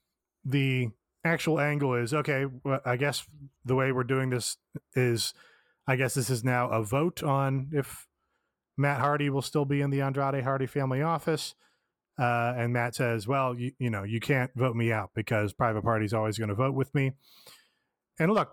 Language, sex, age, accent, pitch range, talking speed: English, male, 20-39, American, 115-140 Hz, 190 wpm